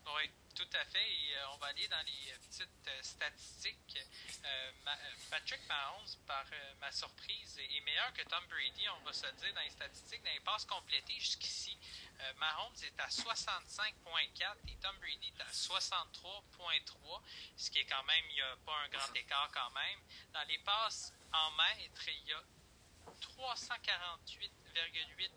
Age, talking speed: 30-49, 180 wpm